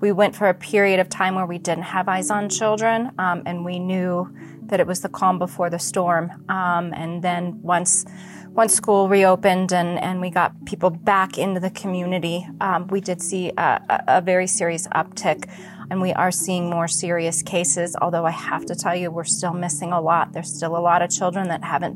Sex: female